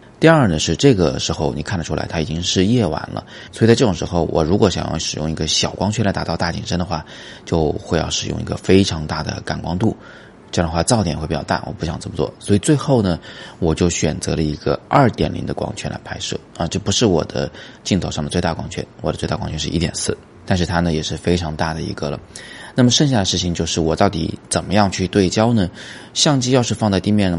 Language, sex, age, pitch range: Chinese, male, 20-39, 80-100 Hz